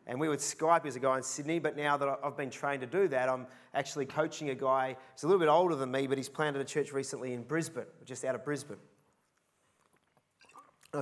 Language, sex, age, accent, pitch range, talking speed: English, male, 30-49, Australian, 140-160 Hz, 230 wpm